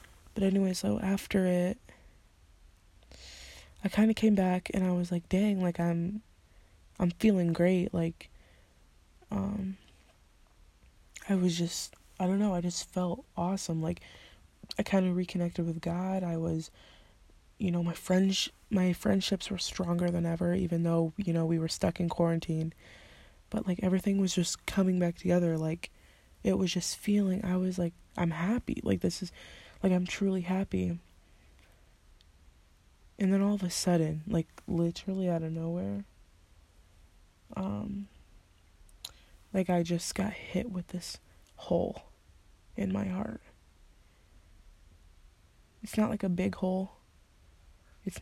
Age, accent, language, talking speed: 20-39, American, English, 145 wpm